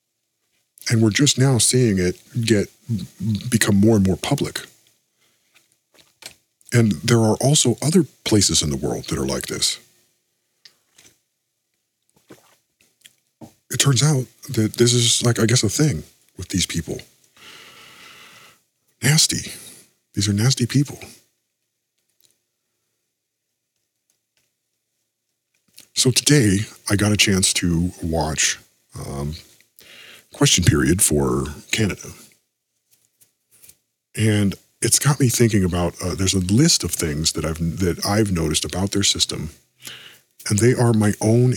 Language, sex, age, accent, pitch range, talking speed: English, male, 50-69, American, 95-120 Hz, 120 wpm